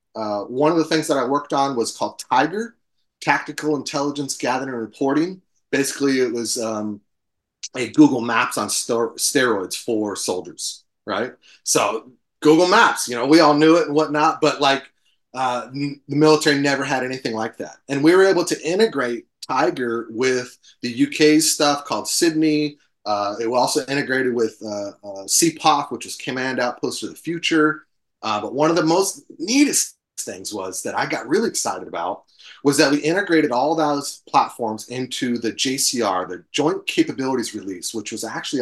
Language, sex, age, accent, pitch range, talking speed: English, male, 30-49, American, 125-155 Hz, 170 wpm